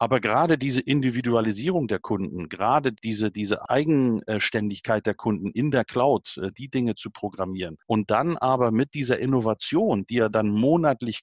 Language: German